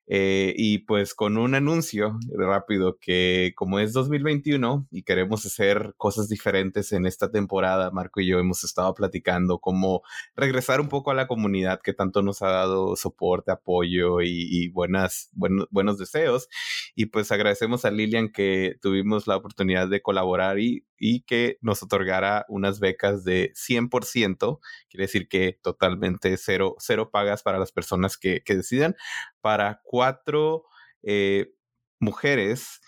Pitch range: 95-110 Hz